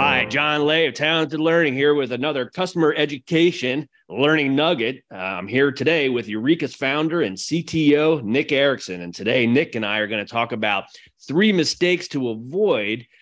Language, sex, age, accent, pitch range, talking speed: English, male, 30-49, American, 110-145 Hz, 170 wpm